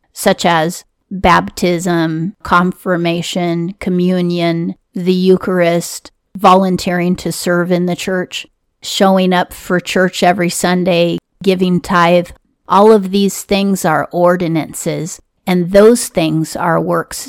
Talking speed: 110 wpm